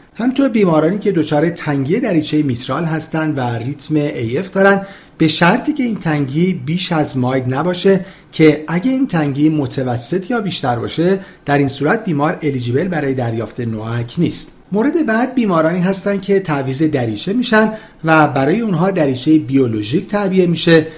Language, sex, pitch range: Persian, male, 140-190 Hz